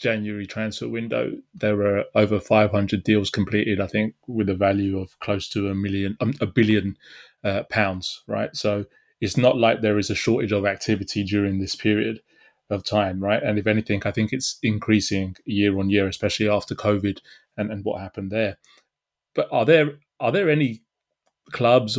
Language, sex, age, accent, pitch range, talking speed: English, male, 20-39, British, 100-115 Hz, 180 wpm